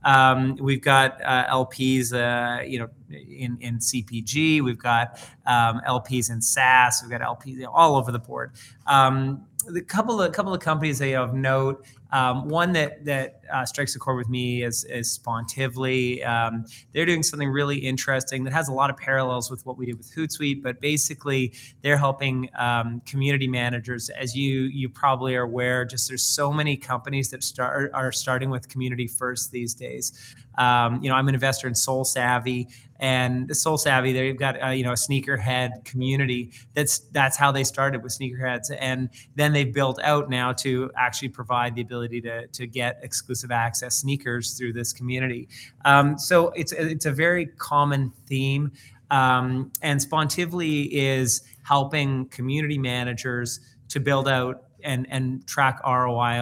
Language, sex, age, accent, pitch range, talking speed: English, male, 30-49, American, 125-140 Hz, 170 wpm